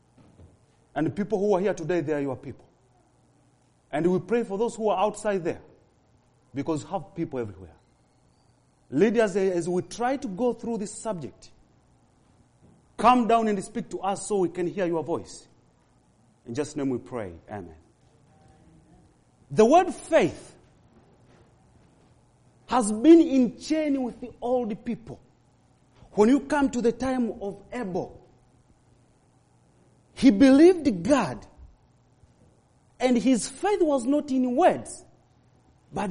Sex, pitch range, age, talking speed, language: male, 165-265 Hz, 40-59, 135 wpm, English